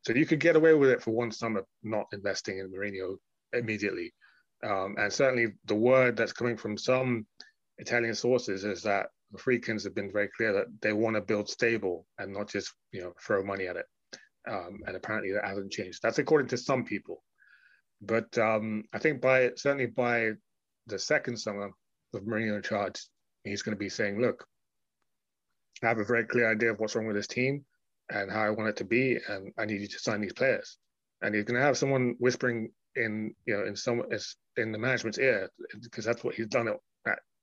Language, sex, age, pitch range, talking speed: English, male, 20-39, 105-125 Hz, 205 wpm